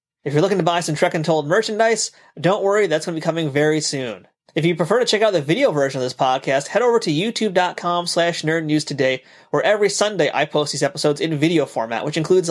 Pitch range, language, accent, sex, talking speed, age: 150-180 Hz, English, American, male, 235 wpm, 30-49